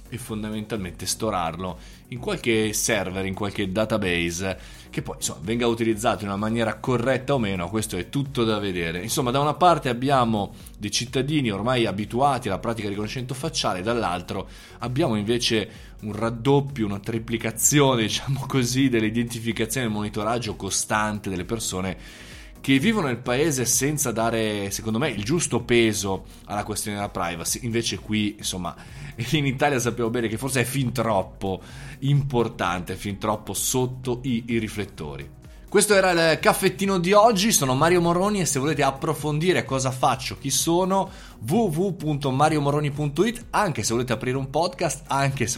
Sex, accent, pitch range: male, native, 105-140 Hz